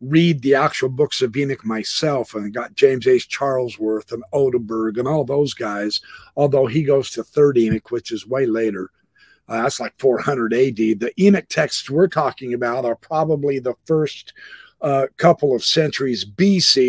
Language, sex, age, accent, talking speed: English, male, 50-69, American, 175 wpm